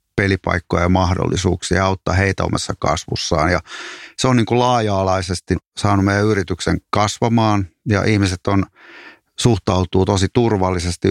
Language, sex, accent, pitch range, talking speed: Finnish, male, native, 90-100 Hz, 125 wpm